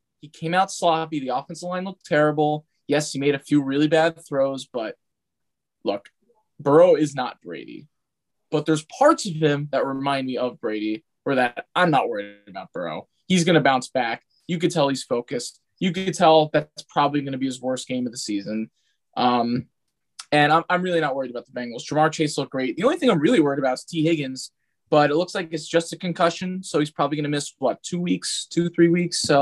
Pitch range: 135-170 Hz